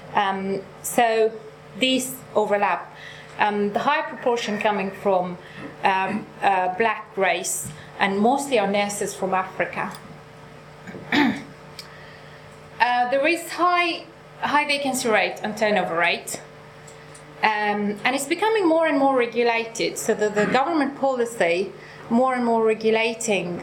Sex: female